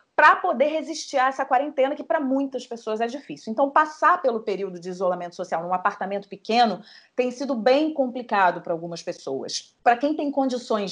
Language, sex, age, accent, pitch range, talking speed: Portuguese, female, 30-49, Brazilian, 200-265 Hz, 180 wpm